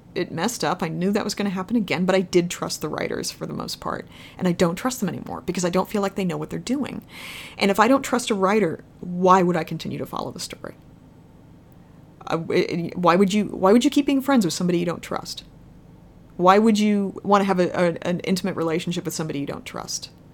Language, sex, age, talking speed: English, female, 30-49, 240 wpm